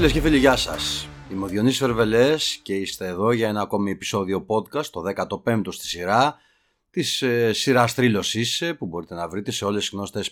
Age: 30-49